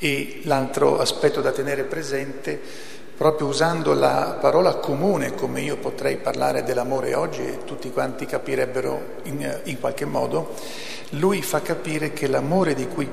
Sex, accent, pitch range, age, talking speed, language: male, native, 125-150 Hz, 50-69, 145 wpm, Italian